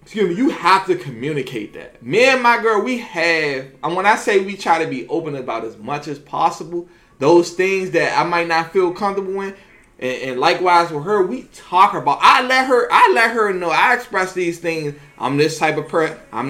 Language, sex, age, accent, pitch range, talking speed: English, male, 20-39, American, 145-195 Hz, 220 wpm